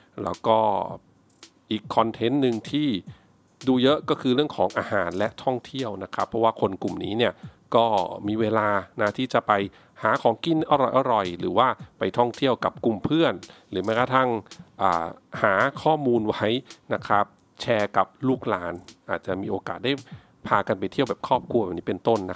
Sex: male